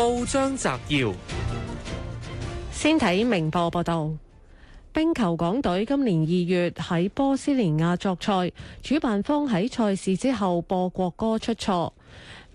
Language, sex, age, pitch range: Chinese, female, 30-49, 170-225 Hz